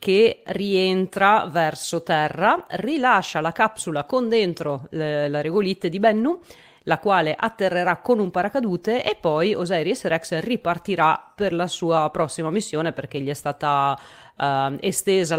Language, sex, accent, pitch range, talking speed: Italian, female, native, 155-190 Hz, 135 wpm